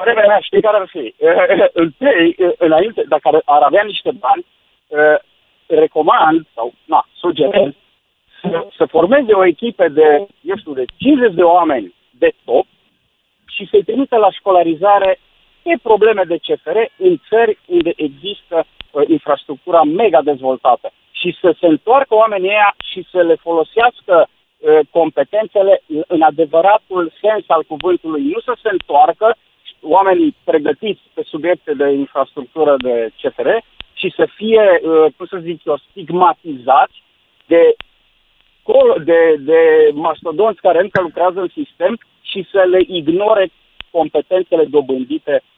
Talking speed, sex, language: 135 wpm, male, Romanian